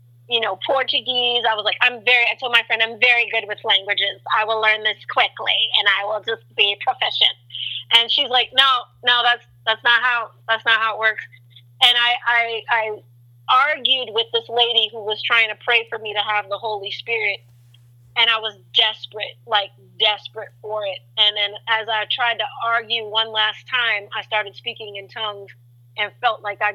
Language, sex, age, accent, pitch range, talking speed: English, female, 30-49, American, 200-235 Hz, 200 wpm